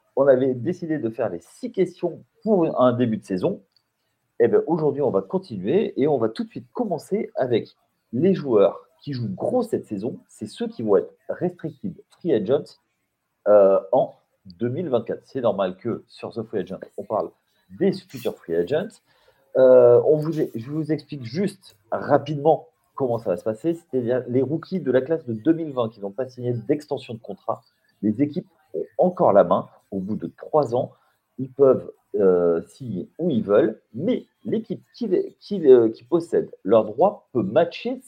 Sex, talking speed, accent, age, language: male, 170 wpm, French, 40-59, French